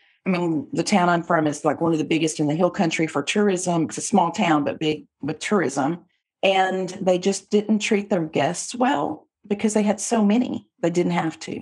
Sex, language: female, English